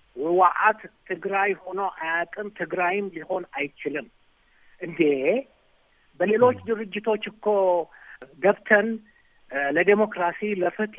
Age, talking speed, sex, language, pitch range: 60-79, 70 wpm, male, Amharic, 165-205 Hz